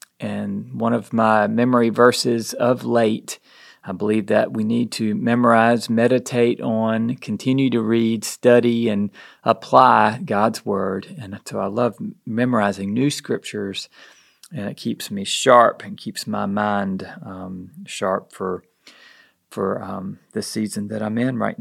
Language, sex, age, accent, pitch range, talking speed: English, male, 40-59, American, 105-125 Hz, 145 wpm